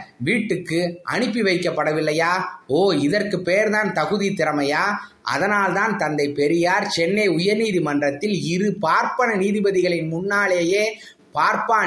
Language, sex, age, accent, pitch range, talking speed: Tamil, male, 20-39, native, 150-205 Hz, 100 wpm